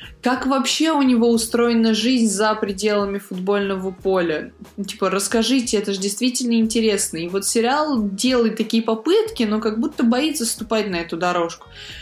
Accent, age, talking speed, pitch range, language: native, 20-39, 150 wpm, 195-245 Hz, Russian